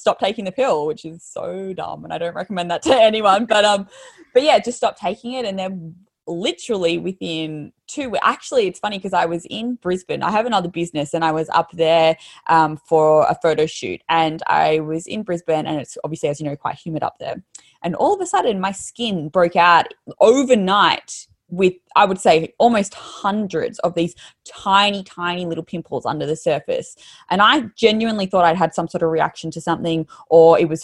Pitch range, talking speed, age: 160-195 Hz, 205 wpm, 20-39